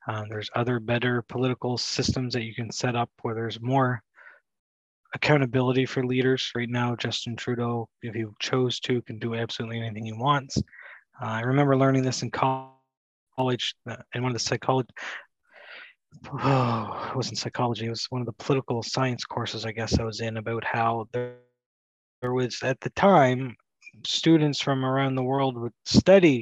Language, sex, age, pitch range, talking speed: English, male, 20-39, 115-135 Hz, 170 wpm